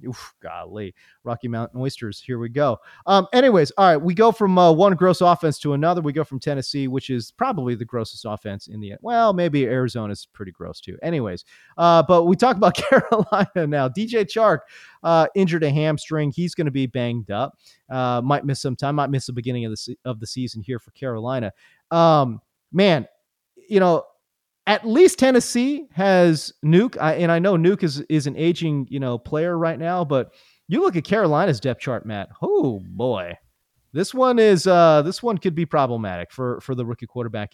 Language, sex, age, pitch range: English, male, 30-49, 125-185 Hz